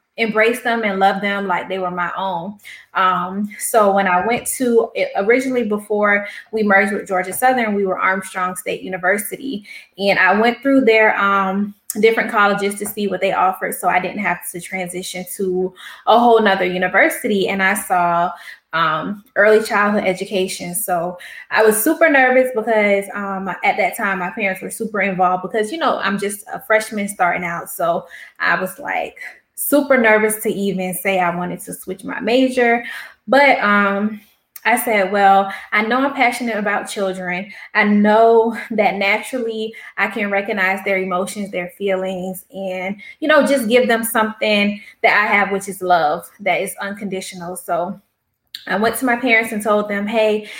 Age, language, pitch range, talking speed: 20-39, English, 190-225 Hz, 175 wpm